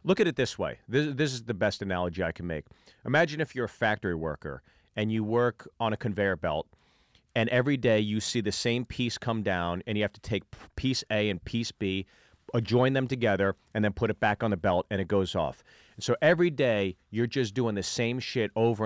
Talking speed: 230 wpm